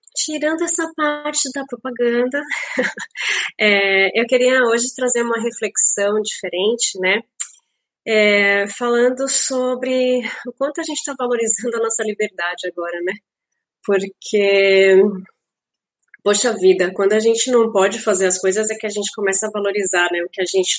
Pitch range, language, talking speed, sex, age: 190-245 Hz, Portuguese, 145 wpm, female, 30-49